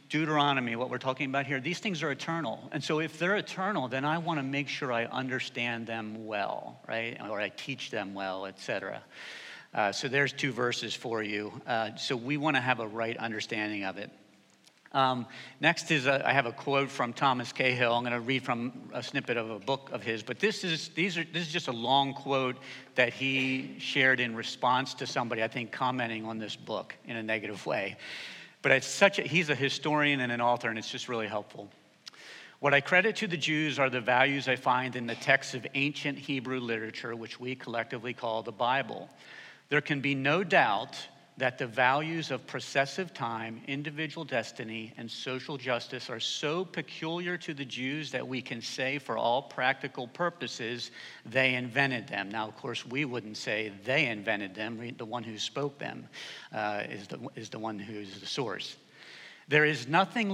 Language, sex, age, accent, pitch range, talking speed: English, male, 50-69, American, 115-145 Hz, 195 wpm